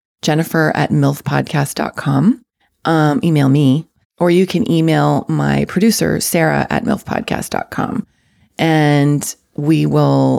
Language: English